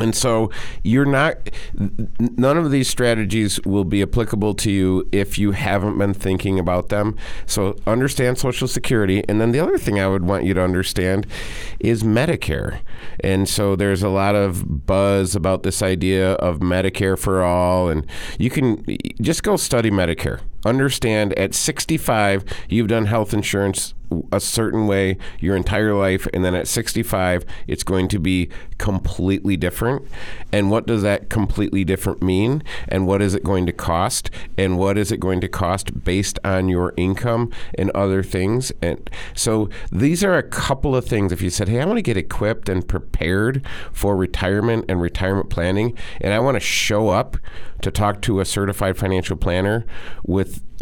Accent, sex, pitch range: American, male, 95-115 Hz